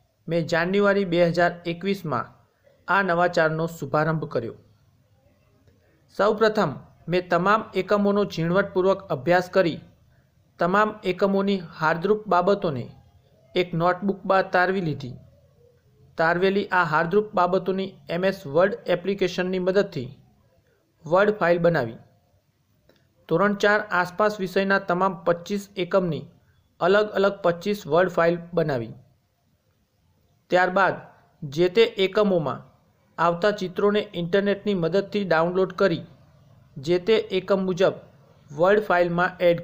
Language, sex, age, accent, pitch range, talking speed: Gujarati, male, 40-59, native, 150-195 Hz, 100 wpm